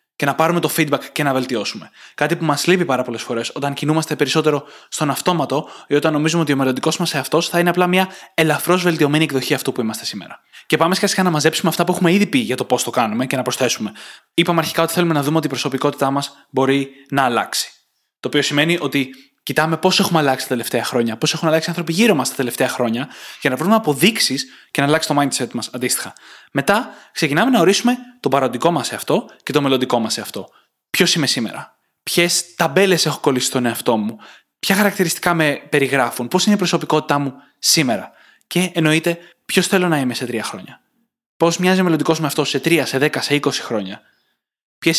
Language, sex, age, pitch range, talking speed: Greek, male, 20-39, 135-170 Hz, 210 wpm